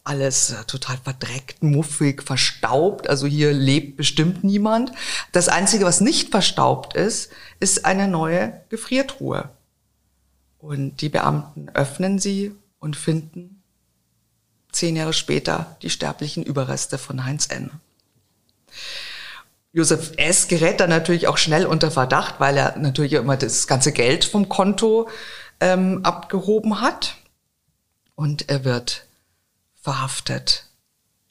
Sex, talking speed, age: female, 115 wpm, 50-69